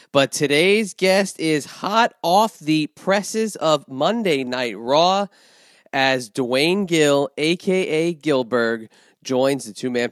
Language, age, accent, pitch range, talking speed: English, 30-49, American, 130-165 Hz, 120 wpm